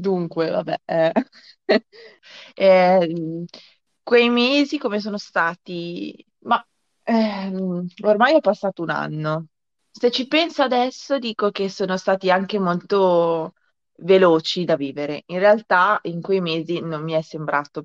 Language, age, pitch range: Italian, 20-39, 160-195 Hz